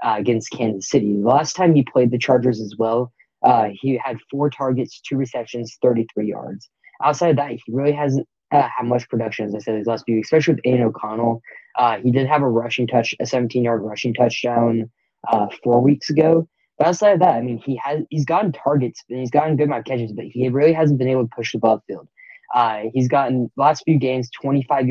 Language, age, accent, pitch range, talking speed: English, 10-29, American, 115-140 Hz, 225 wpm